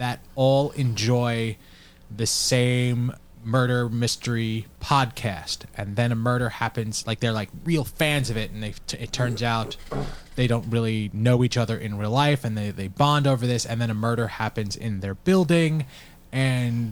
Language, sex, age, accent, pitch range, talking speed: English, male, 20-39, American, 100-130 Hz, 175 wpm